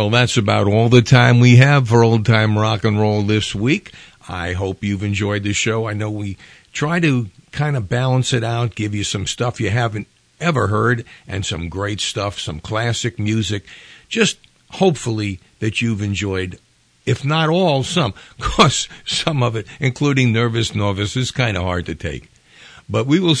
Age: 50-69